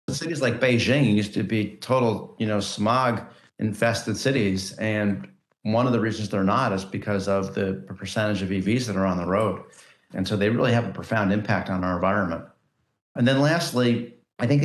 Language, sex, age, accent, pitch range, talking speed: English, male, 40-59, American, 95-115 Hz, 195 wpm